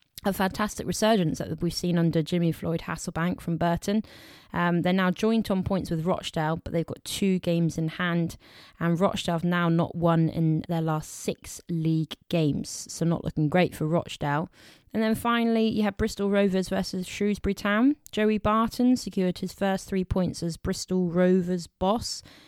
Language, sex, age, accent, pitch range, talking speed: English, female, 20-39, British, 160-190 Hz, 175 wpm